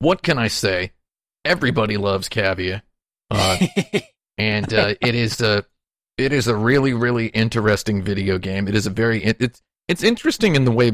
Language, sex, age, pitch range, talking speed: English, male, 40-59, 95-115 Hz, 175 wpm